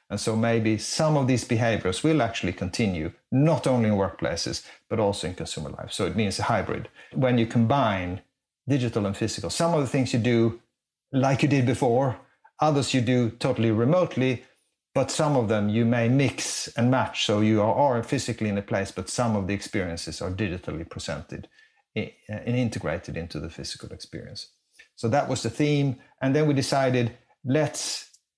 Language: English